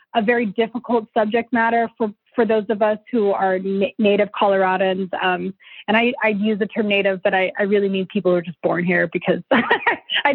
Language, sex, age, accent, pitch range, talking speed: English, female, 30-49, American, 200-245 Hz, 205 wpm